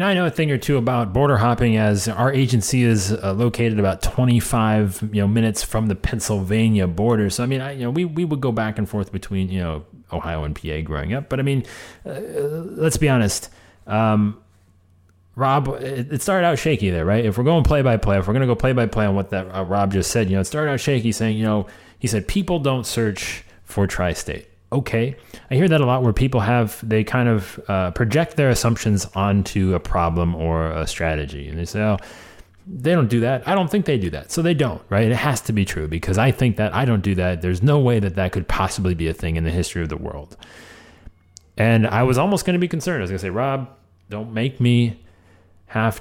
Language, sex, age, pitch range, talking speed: English, male, 30-49, 90-125 Hz, 240 wpm